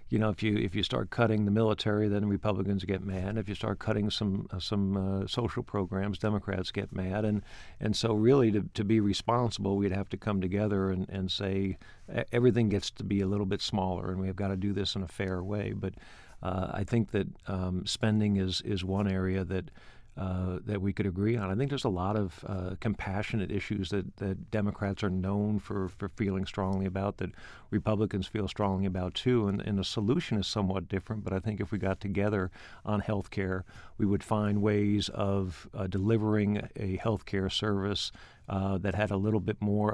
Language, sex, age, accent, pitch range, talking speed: English, male, 50-69, American, 95-105 Hz, 210 wpm